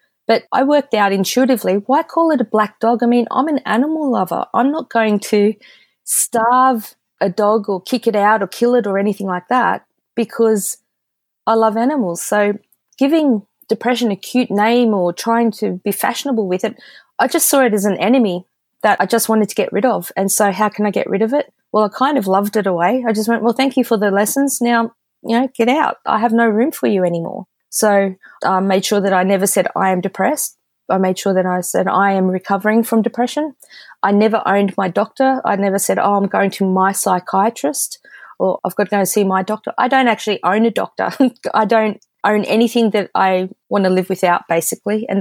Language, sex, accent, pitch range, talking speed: English, female, Australian, 195-240 Hz, 225 wpm